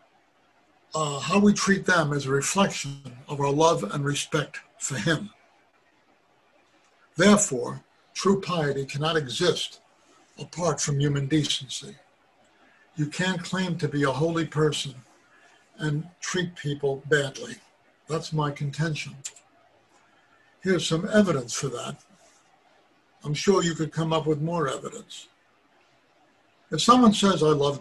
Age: 60-79